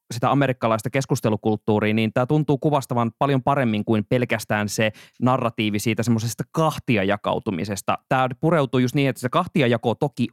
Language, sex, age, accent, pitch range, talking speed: Finnish, male, 20-39, native, 115-145 Hz, 140 wpm